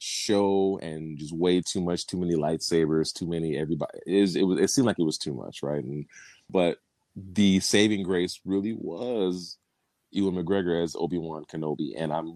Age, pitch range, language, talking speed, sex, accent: 30-49, 80-95 Hz, English, 185 wpm, male, American